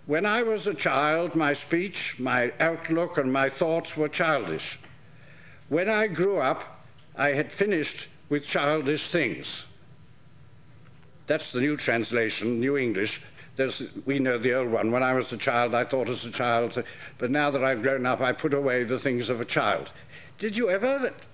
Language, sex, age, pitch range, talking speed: English, male, 60-79, 130-165 Hz, 175 wpm